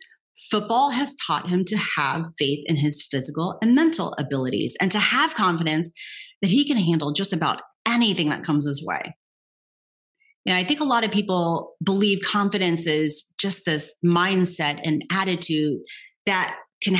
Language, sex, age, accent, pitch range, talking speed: English, female, 30-49, American, 155-205 Hz, 160 wpm